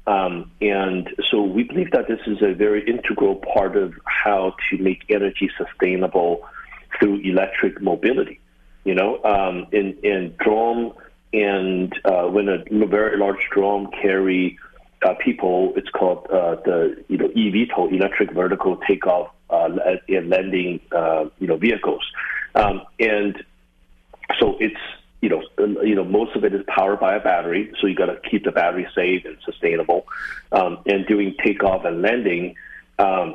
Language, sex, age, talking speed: English, male, 50-69, 160 wpm